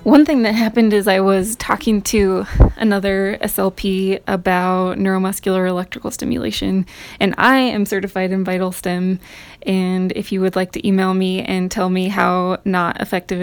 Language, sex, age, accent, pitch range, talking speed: English, female, 20-39, American, 185-210 Hz, 160 wpm